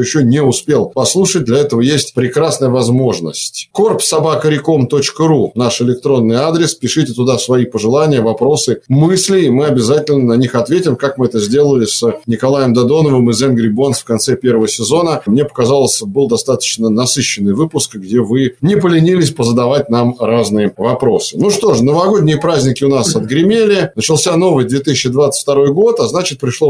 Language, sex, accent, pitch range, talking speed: Russian, male, native, 125-160 Hz, 155 wpm